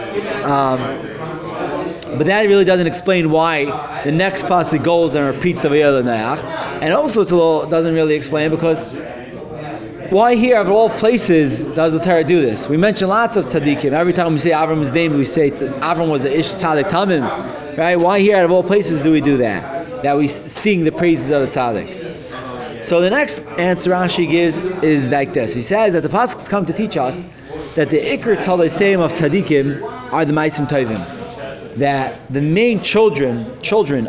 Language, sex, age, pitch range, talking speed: English, male, 20-39, 145-190 Hz, 180 wpm